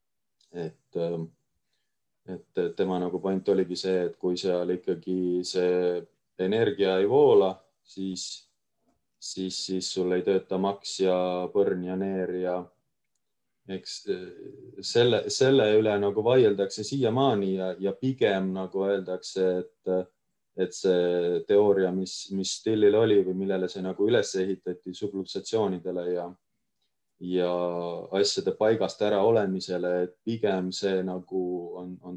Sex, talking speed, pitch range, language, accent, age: male, 125 wpm, 90-100 Hz, English, Finnish, 20-39